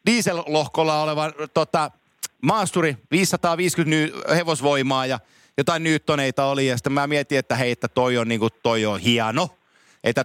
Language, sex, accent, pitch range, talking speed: Finnish, male, native, 125-160 Hz, 145 wpm